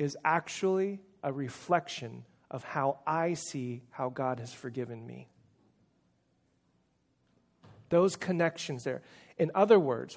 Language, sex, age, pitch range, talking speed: English, male, 30-49, 145-200 Hz, 110 wpm